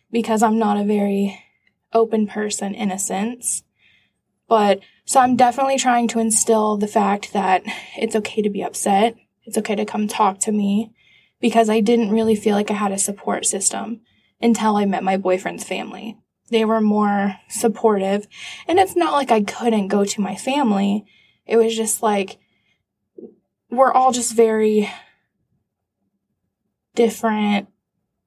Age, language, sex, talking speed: 10-29, English, female, 155 wpm